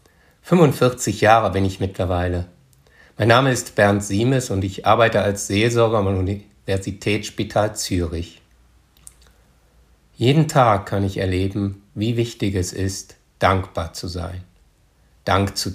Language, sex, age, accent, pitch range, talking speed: German, male, 60-79, German, 90-115 Hz, 120 wpm